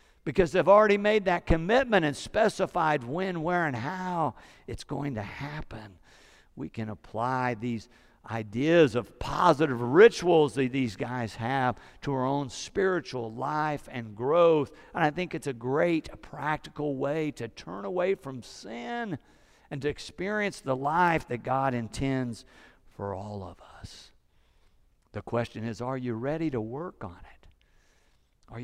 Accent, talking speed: American, 150 wpm